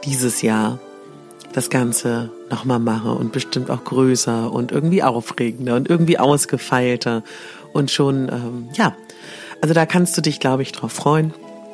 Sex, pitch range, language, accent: female, 135-170 Hz, German, German